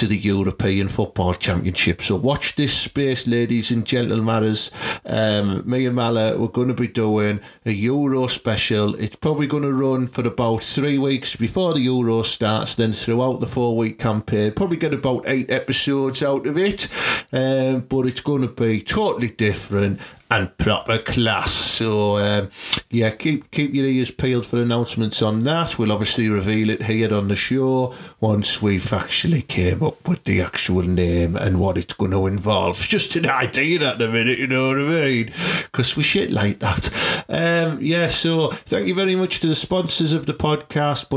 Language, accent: English, British